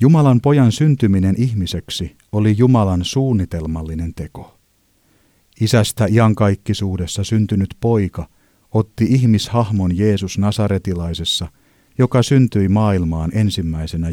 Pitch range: 90-110 Hz